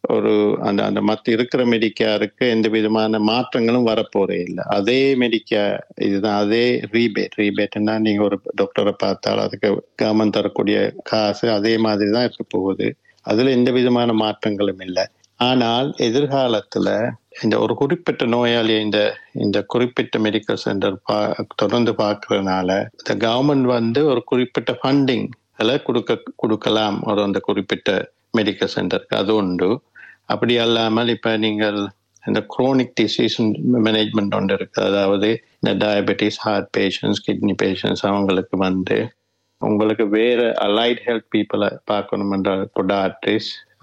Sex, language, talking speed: male, Tamil, 120 wpm